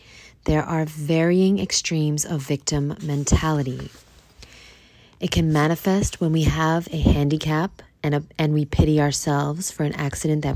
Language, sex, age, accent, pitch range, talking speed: English, female, 30-49, American, 140-180 Hz, 140 wpm